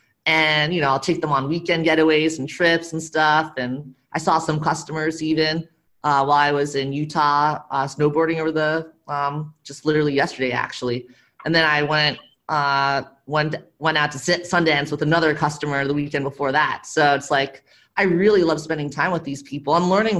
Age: 30-49